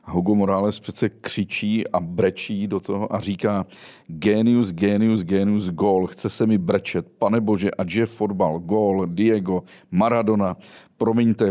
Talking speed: 140 wpm